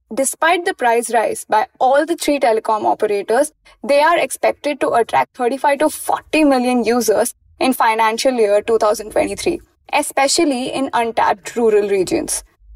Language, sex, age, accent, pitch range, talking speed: English, female, 20-39, Indian, 235-310 Hz, 135 wpm